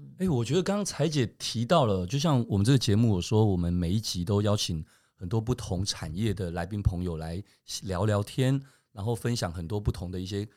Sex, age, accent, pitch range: male, 30-49, native, 100-135 Hz